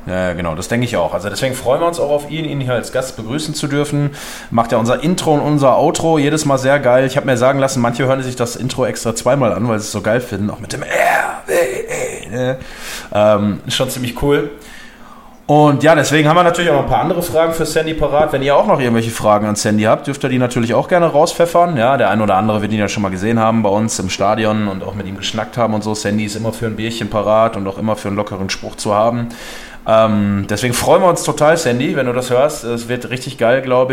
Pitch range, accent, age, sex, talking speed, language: 105-135 Hz, German, 20-39, male, 255 wpm, German